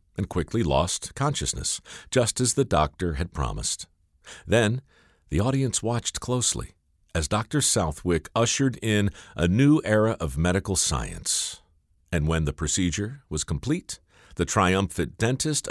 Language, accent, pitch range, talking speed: English, American, 85-125 Hz, 135 wpm